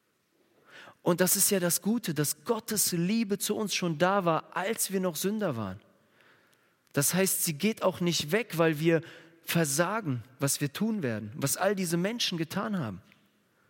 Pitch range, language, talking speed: 145-215 Hz, German, 170 wpm